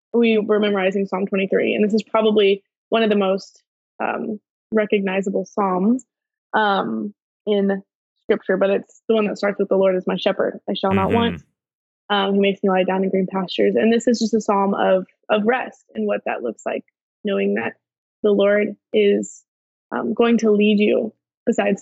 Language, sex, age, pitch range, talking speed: English, female, 20-39, 200-235 Hz, 190 wpm